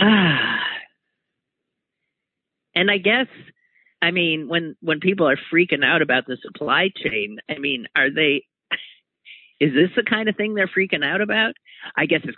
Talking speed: 160 wpm